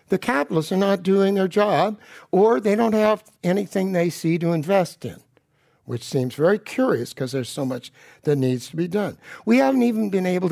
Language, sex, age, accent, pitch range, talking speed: English, male, 60-79, American, 140-195 Hz, 200 wpm